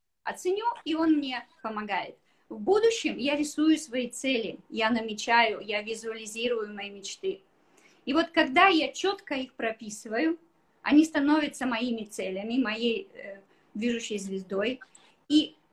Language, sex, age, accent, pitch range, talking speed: Russian, female, 20-39, native, 215-300 Hz, 125 wpm